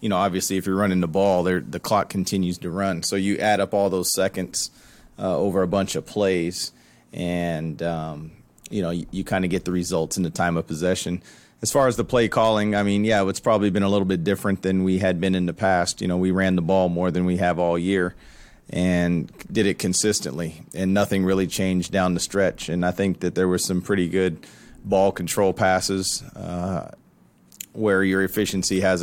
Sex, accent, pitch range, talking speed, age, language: male, American, 90-100 Hz, 215 wpm, 30-49, English